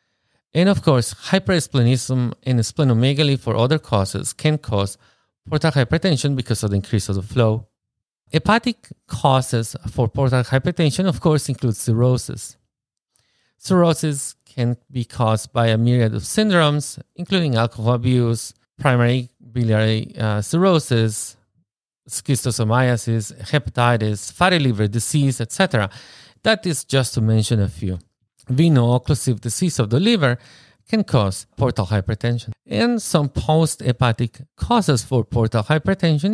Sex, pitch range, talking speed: male, 115-150 Hz, 120 wpm